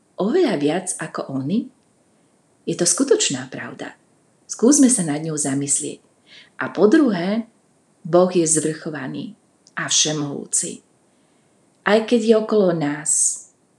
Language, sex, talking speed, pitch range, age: Slovak, female, 115 wpm, 150-195 Hz, 30-49